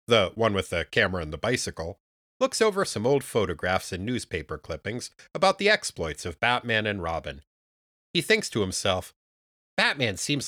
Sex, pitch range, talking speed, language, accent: male, 80-110 Hz, 165 wpm, English, American